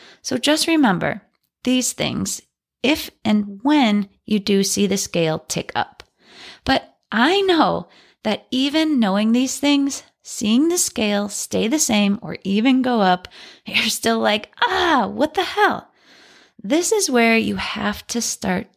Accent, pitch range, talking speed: American, 195-275 Hz, 150 wpm